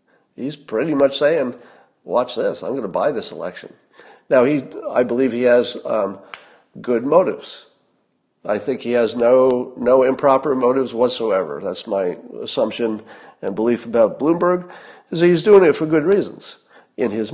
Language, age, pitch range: English, 50-69, 120-175 Hz